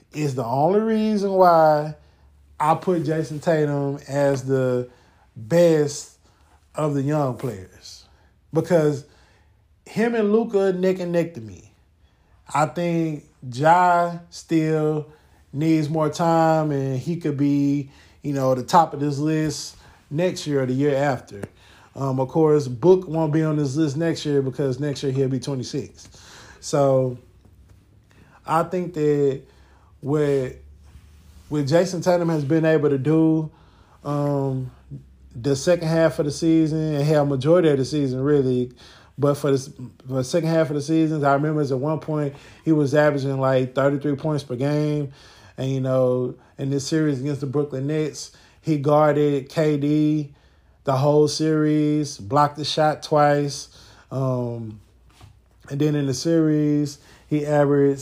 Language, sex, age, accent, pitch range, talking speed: English, male, 20-39, American, 130-155 Hz, 150 wpm